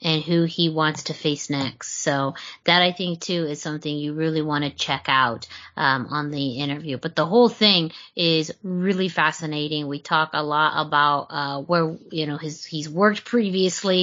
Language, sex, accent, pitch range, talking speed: English, female, American, 160-205 Hz, 190 wpm